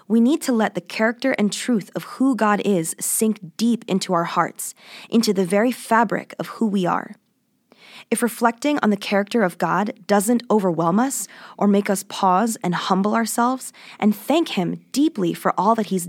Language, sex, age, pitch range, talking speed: English, female, 20-39, 195-245 Hz, 185 wpm